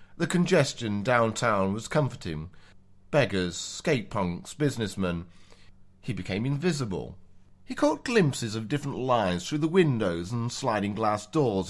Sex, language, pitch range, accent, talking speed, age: male, English, 95-125 Hz, British, 120 wpm, 40-59